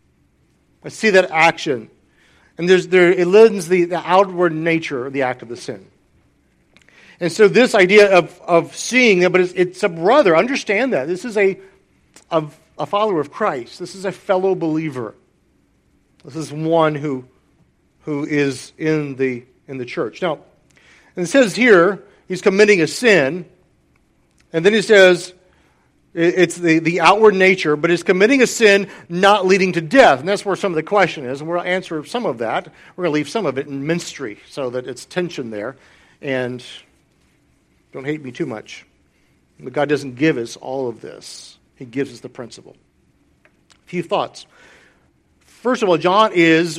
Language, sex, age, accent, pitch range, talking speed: English, male, 50-69, American, 140-185 Hz, 180 wpm